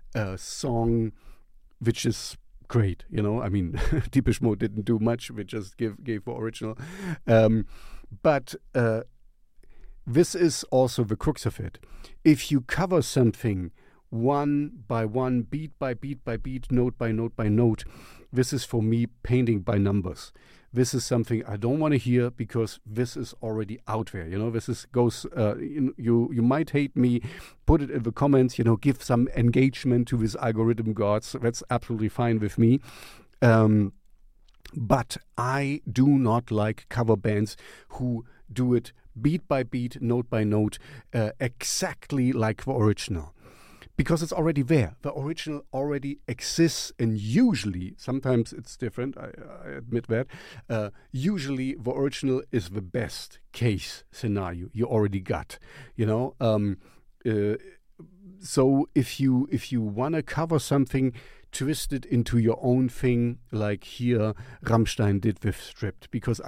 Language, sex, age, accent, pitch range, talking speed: English, male, 50-69, German, 110-135 Hz, 160 wpm